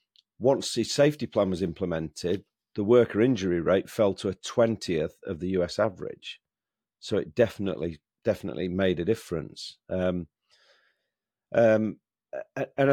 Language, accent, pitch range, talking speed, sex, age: English, British, 95-120 Hz, 130 wpm, male, 40-59